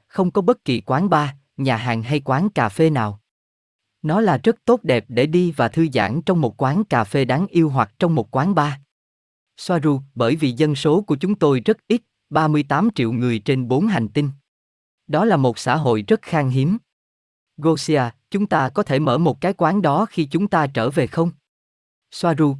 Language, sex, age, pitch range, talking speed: Vietnamese, male, 20-39, 120-160 Hz, 205 wpm